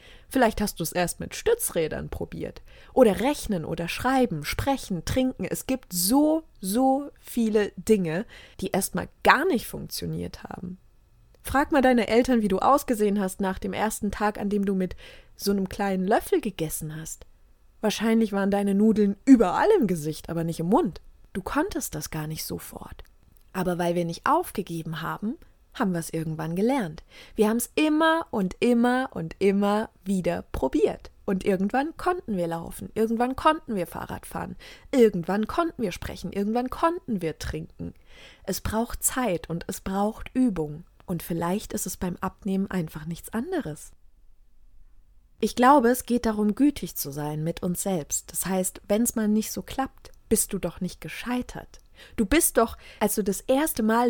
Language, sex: German, female